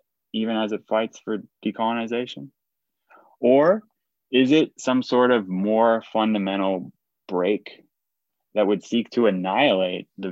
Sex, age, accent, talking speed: male, 20-39, American, 120 wpm